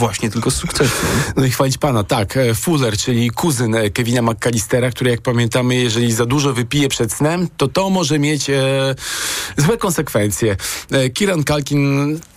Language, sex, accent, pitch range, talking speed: Polish, male, native, 115-140 Hz, 155 wpm